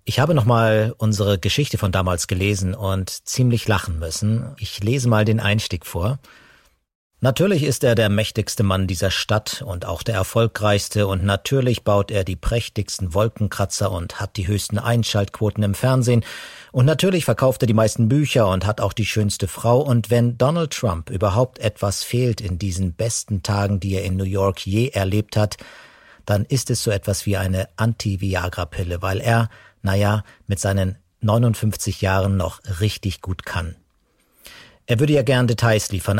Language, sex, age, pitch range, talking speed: German, male, 50-69, 95-115 Hz, 165 wpm